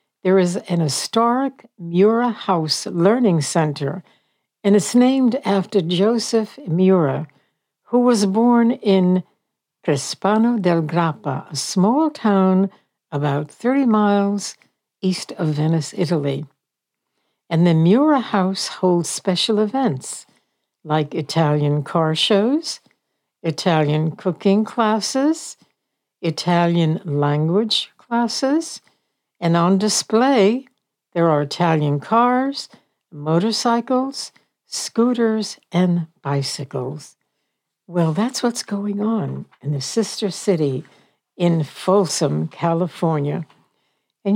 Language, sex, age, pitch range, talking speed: English, female, 60-79, 155-215 Hz, 95 wpm